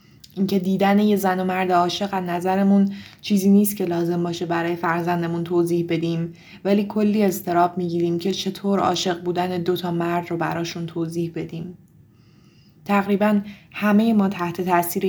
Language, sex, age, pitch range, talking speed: Persian, female, 20-39, 170-195 Hz, 145 wpm